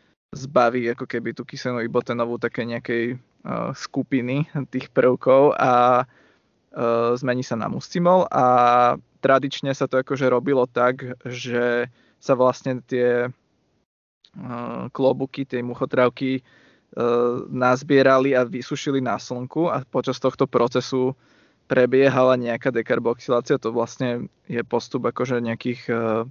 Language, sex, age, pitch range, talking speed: Slovak, male, 20-39, 120-130 Hz, 120 wpm